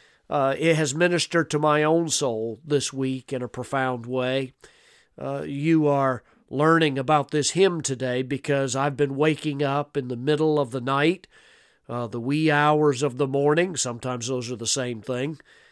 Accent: American